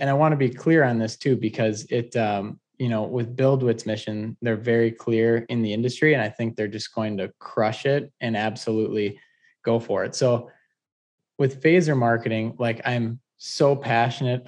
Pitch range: 110-130 Hz